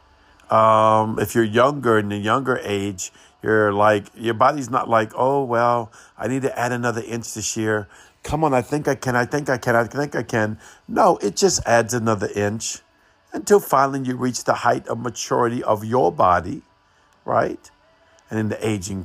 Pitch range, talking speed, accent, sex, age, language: 100-125 Hz, 190 wpm, American, male, 50-69, English